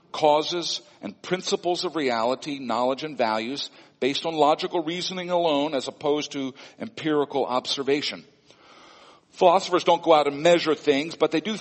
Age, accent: 50-69, American